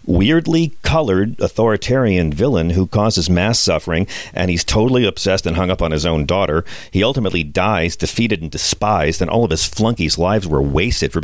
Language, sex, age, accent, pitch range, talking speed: English, male, 40-59, American, 80-110 Hz, 180 wpm